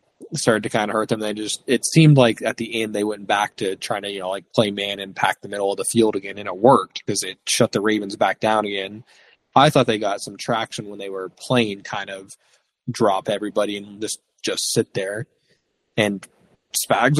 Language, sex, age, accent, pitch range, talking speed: English, male, 20-39, American, 105-130 Hz, 225 wpm